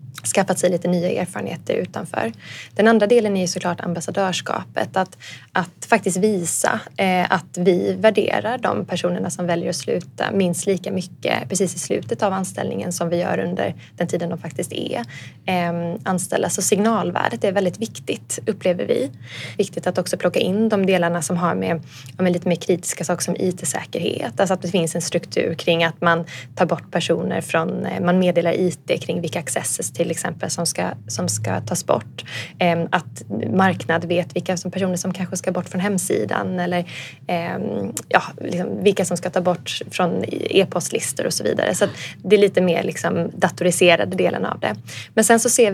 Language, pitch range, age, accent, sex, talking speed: English, 170-195 Hz, 20-39, Swedish, female, 175 wpm